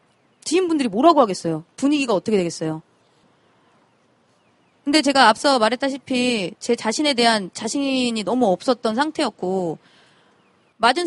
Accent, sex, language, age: native, female, Korean, 20-39